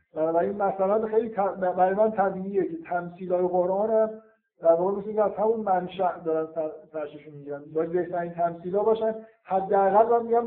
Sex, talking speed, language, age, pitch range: male, 165 wpm, Persian, 50-69, 165-200 Hz